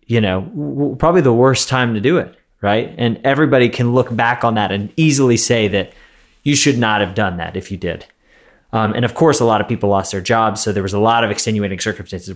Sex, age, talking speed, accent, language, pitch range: male, 30-49, 240 wpm, American, English, 105-135 Hz